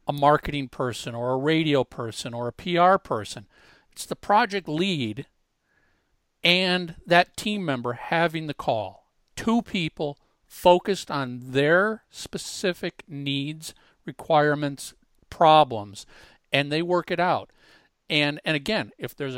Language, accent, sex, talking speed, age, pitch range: English, American, male, 125 wpm, 50-69, 140-180 Hz